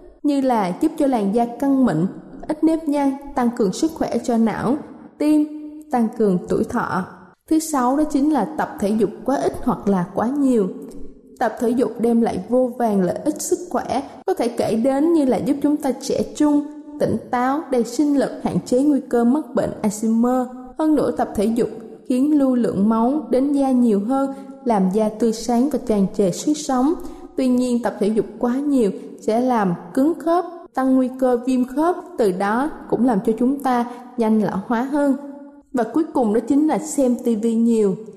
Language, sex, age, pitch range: Thai, female, 20-39, 225-280 Hz